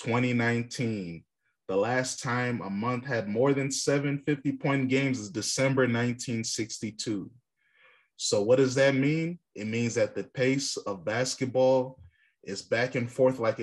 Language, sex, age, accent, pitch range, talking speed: English, male, 20-39, American, 110-135 Hz, 140 wpm